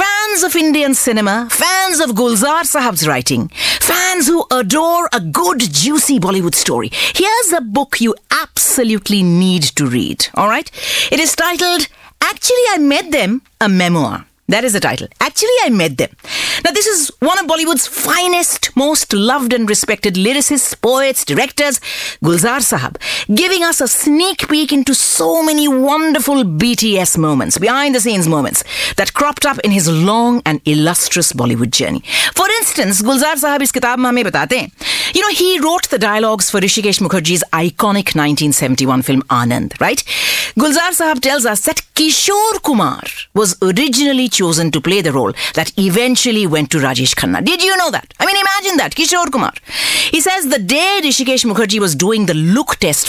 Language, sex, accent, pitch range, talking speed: English, female, Indian, 195-315 Hz, 165 wpm